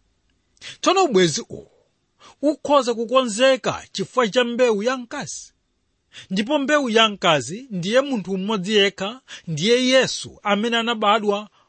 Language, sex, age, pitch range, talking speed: English, male, 40-59, 170-245 Hz, 105 wpm